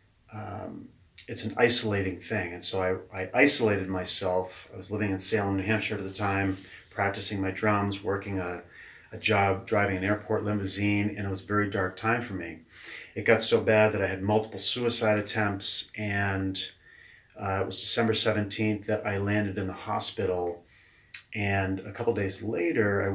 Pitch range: 95-110 Hz